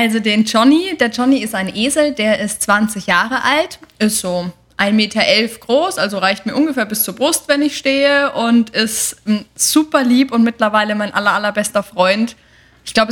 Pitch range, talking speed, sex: 215-265 Hz, 185 wpm, female